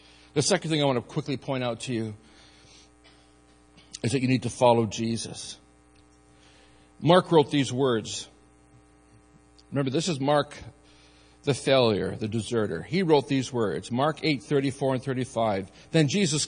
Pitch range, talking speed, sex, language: 100-165 Hz, 150 wpm, male, English